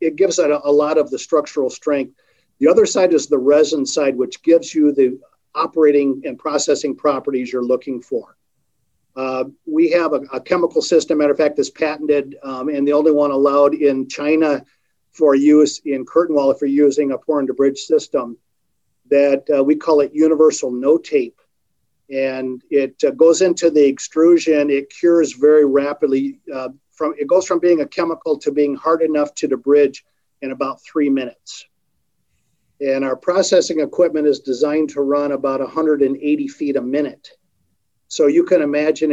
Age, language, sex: 50-69, English, male